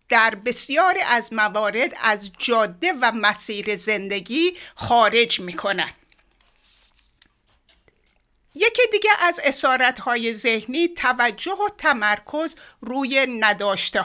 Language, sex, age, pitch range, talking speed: Persian, female, 60-79, 215-340 Hz, 90 wpm